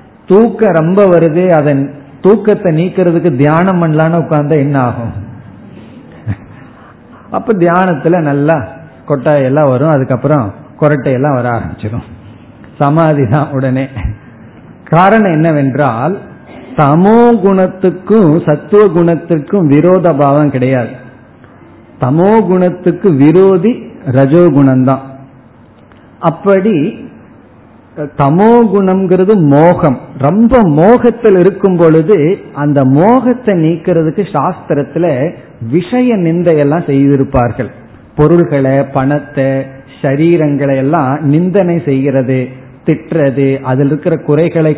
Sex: male